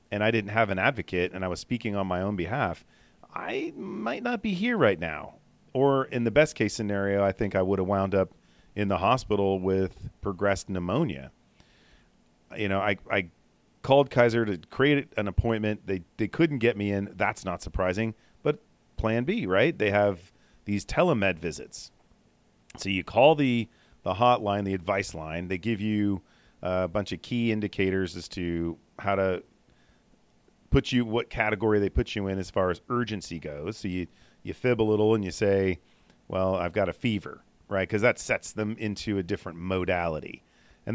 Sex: male